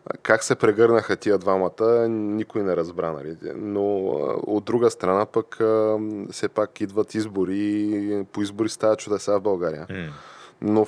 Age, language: 20-39, Bulgarian